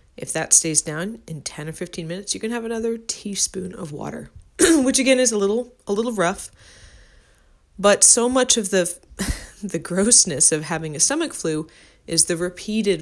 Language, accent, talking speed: English, American, 180 wpm